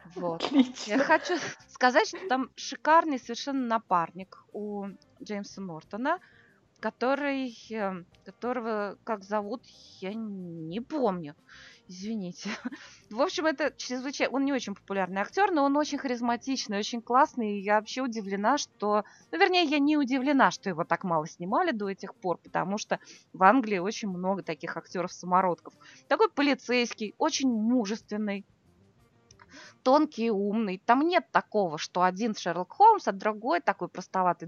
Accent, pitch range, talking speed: native, 185-260 Hz, 135 wpm